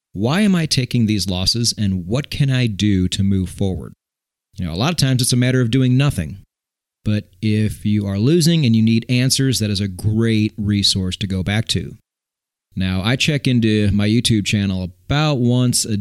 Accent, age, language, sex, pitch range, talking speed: American, 30-49, English, male, 95-125 Hz, 200 wpm